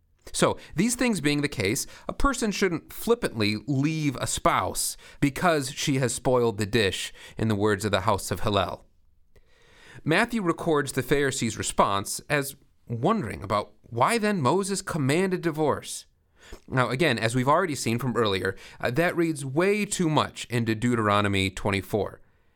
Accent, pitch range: American, 110-165 Hz